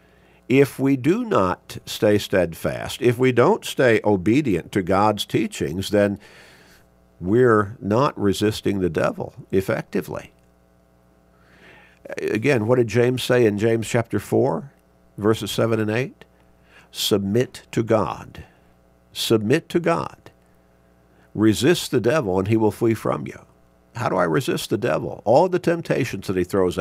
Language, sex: English, male